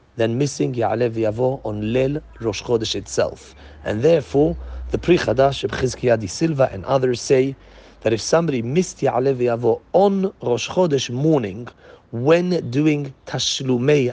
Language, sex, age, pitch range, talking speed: English, male, 40-59, 110-140 Hz, 135 wpm